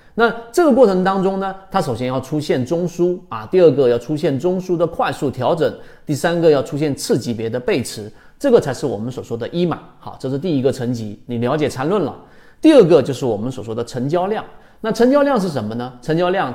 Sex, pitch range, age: male, 125-200 Hz, 30-49